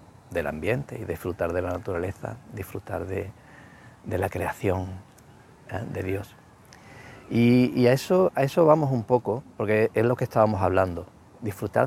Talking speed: 150 wpm